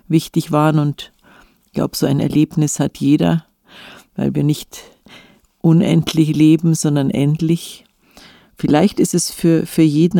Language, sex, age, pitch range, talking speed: German, female, 50-69, 150-170 Hz, 135 wpm